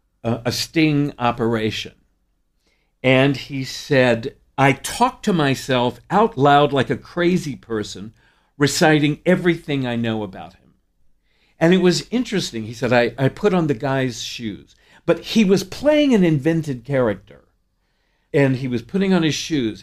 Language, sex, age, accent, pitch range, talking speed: English, male, 60-79, American, 110-155 Hz, 150 wpm